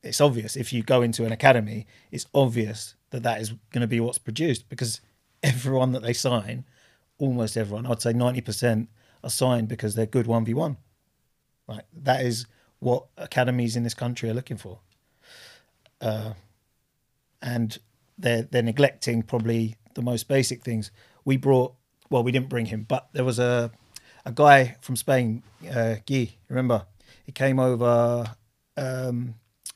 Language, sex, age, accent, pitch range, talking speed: English, male, 30-49, British, 115-135 Hz, 155 wpm